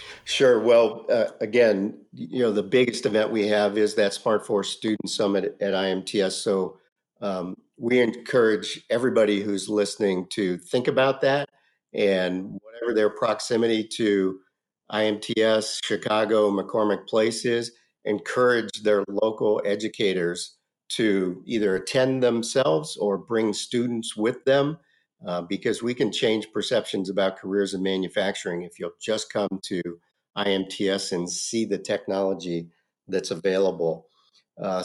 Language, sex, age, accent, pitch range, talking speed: English, male, 50-69, American, 95-115 Hz, 130 wpm